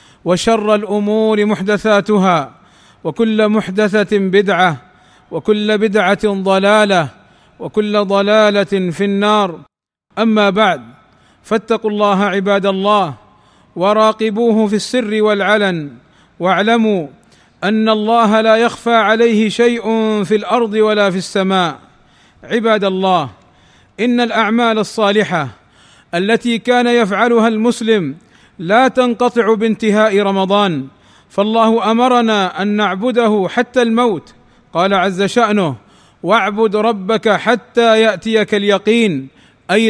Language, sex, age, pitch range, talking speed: Arabic, male, 40-59, 195-230 Hz, 95 wpm